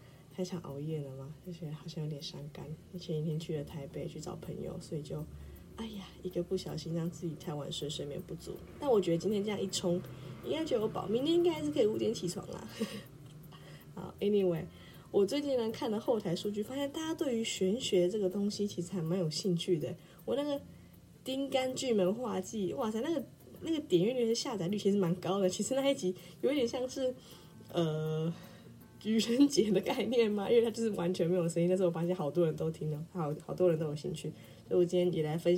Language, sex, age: Chinese, female, 20-39